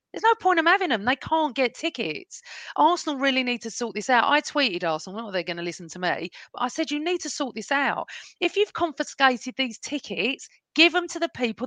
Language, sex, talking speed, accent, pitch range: English, female, 245 wpm, British, 210-310 Hz